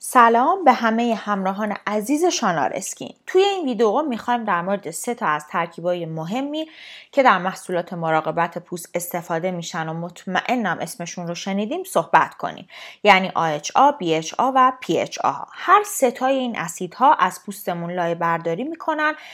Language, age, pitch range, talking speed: Persian, 20-39, 175-275 Hz, 145 wpm